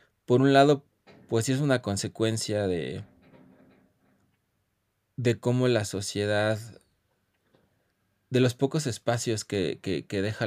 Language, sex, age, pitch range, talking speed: Spanish, male, 20-39, 100-120 Hz, 110 wpm